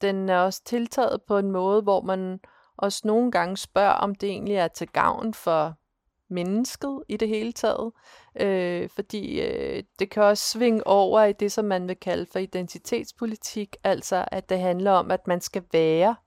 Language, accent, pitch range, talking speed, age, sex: Danish, native, 185-225 Hz, 175 wpm, 30-49, female